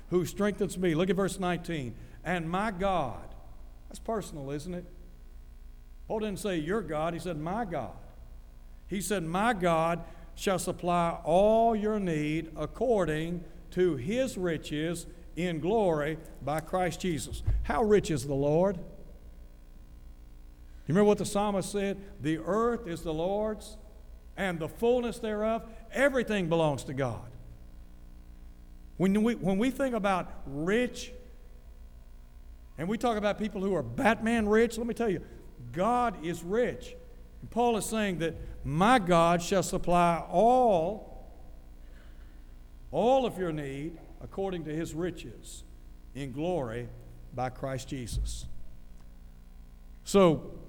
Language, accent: English, American